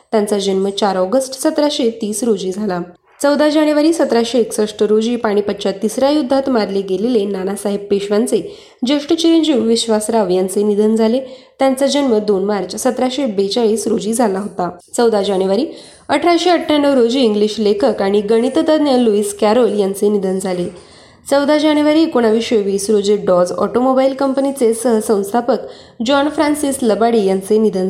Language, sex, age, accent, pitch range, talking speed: Marathi, female, 20-39, native, 205-270 Hz, 125 wpm